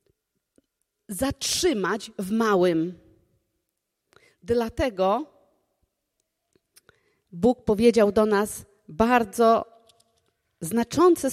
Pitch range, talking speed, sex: 205-320 Hz, 55 wpm, female